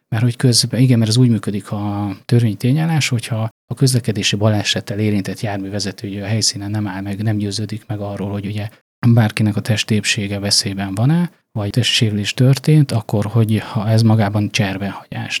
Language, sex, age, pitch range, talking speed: Hungarian, male, 30-49, 105-120 Hz, 155 wpm